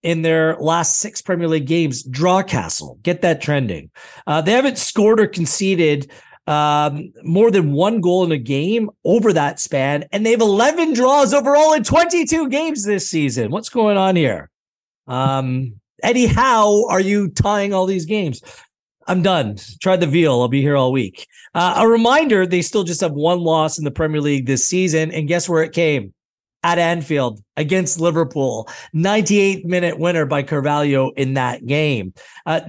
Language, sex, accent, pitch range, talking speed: English, male, American, 150-205 Hz, 175 wpm